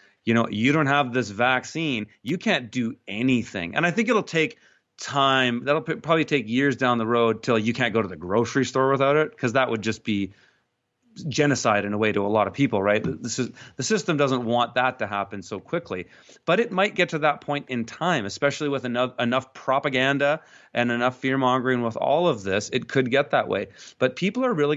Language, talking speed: English, 220 wpm